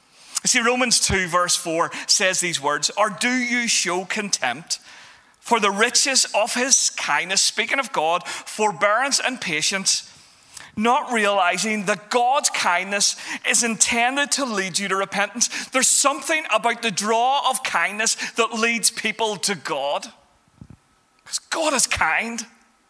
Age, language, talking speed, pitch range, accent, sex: 40-59, English, 140 wpm, 185-245 Hz, British, male